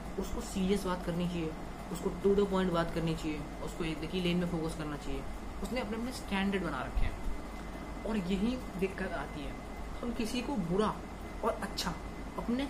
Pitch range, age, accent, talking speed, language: 160-210 Hz, 20-39, native, 185 wpm, Hindi